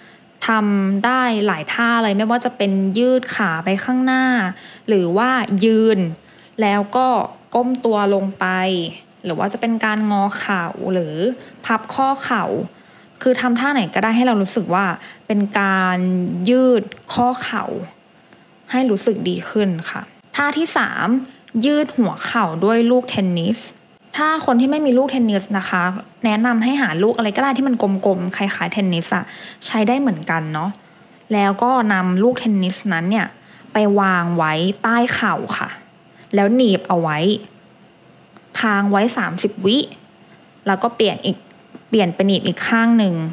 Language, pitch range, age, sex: English, 195-245 Hz, 20-39, female